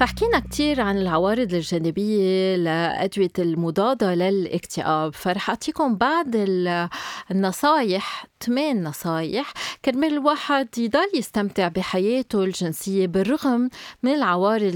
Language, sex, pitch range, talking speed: Arabic, female, 185-245 Hz, 95 wpm